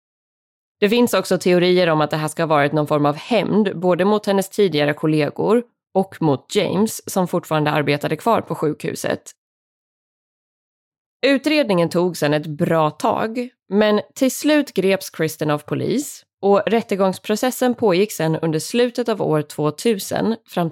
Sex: female